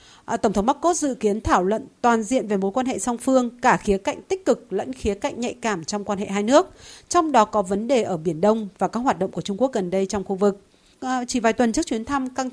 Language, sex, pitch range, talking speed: Vietnamese, female, 205-260 Hz, 275 wpm